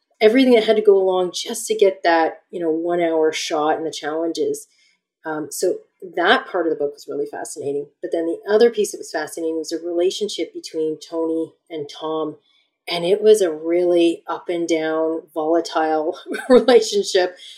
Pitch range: 165-215 Hz